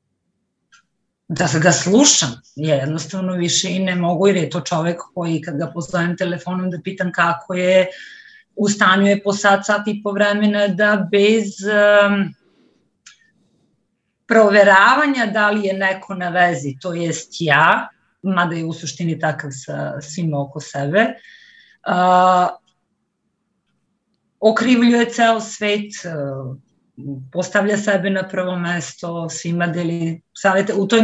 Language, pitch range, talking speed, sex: Croatian, 170-210 Hz, 125 wpm, female